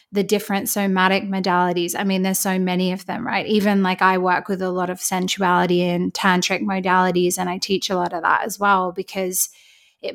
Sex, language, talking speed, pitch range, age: female, English, 205 wpm, 190-215 Hz, 20-39